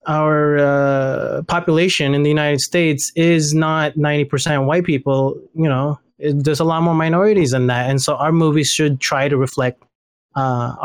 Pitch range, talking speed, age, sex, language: 130-150 Hz, 170 wpm, 20-39, male, English